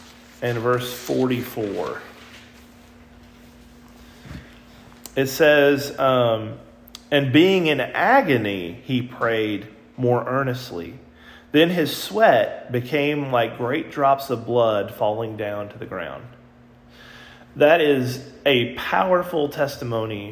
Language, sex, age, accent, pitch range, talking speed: English, male, 30-49, American, 115-135 Hz, 95 wpm